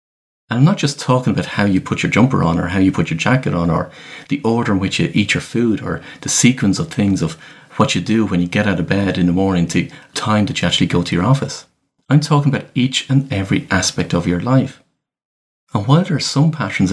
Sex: male